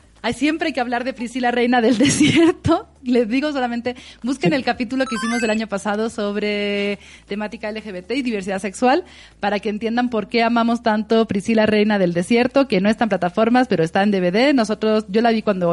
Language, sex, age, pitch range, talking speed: Spanish, female, 30-49, 190-240 Hz, 195 wpm